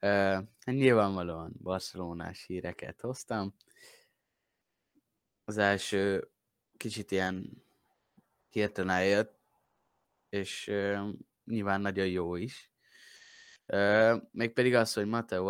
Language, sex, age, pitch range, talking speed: Hungarian, male, 20-39, 95-110 Hz, 95 wpm